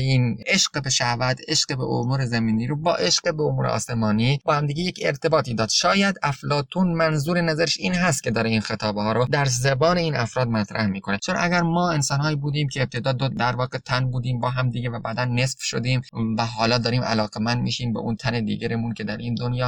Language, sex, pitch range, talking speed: Persian, male, 110-145 Hz, 215 wpm